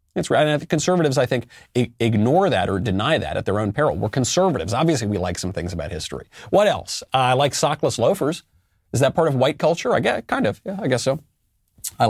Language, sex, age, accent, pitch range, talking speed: English, male, 40-59, American, 95-150 Hz, 225 wpm